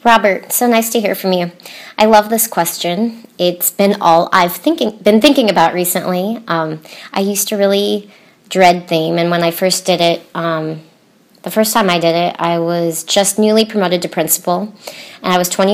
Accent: American